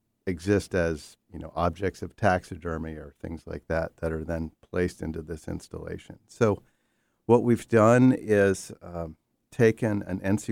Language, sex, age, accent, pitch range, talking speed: English, male, 50-69, American, 85-100 Hz, 155 wpm